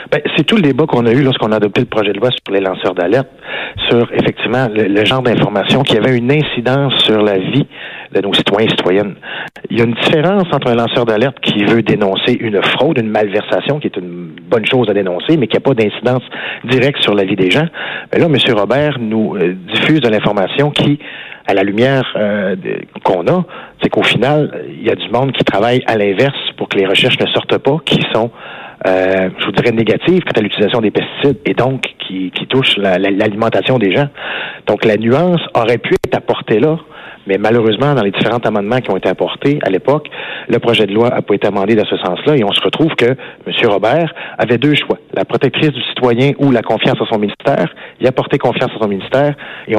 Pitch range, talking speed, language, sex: 105-135 Hz, 225 wpm, French, male